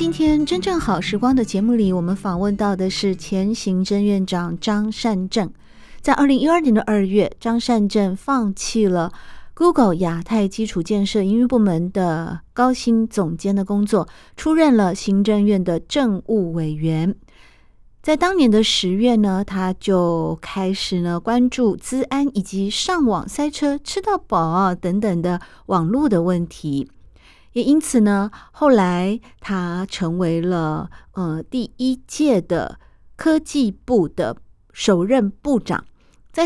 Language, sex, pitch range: Chinese, female, 180-235 Hz